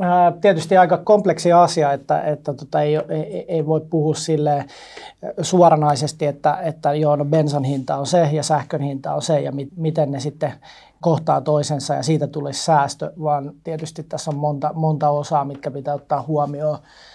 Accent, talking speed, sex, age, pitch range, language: native, 170 wpm, male, 30-49, 140-155 Hz, Finnish